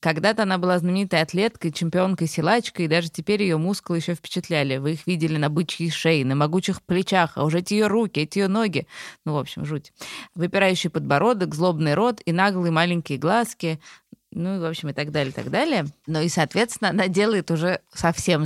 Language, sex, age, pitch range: Russian, female, 20-39, 150-210 Hz